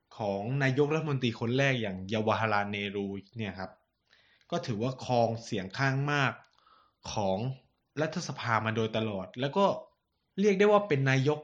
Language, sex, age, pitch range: Thai, male, 20-39, 110-135 Hz